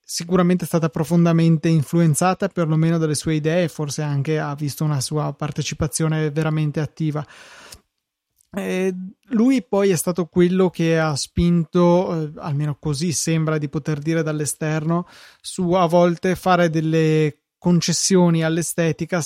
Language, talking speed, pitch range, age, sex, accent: Italian, 130 wpm, 155-175 Hz, 20-39, male, native